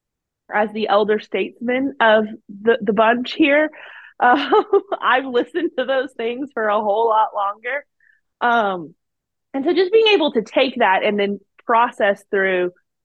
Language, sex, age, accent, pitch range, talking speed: English, female, 20-39, American, 180-235 Hz, 150 wpm